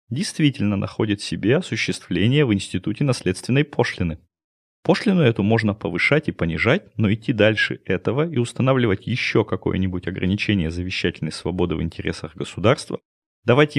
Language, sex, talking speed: Russian, male, 125 wpm